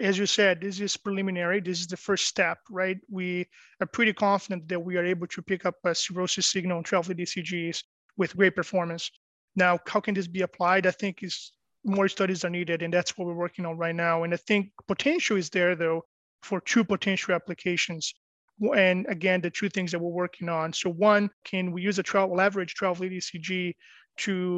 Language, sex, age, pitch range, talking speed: English, male, 30-49, 175-195 Hz, 210 wpm